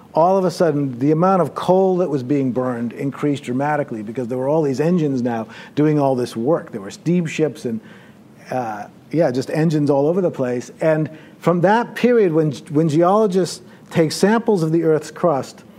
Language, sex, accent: English, male, American